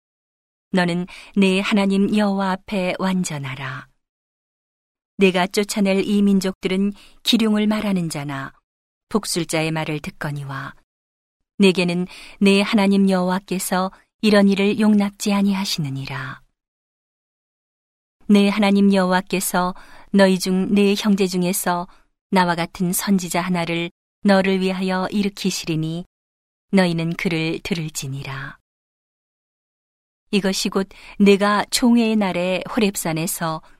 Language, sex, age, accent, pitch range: Korean, female, 40-59, native, 170-200 Hz